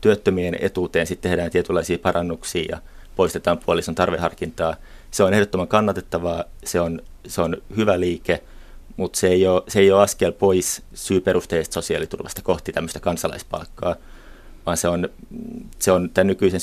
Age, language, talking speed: 30-49, Finnish, 150 wpm